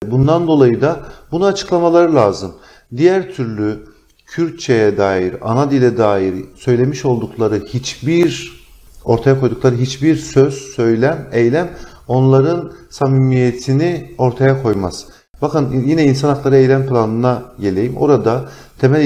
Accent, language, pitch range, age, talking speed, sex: native, Turkish, 105-135 Hz, 50-69, 110 wpm, male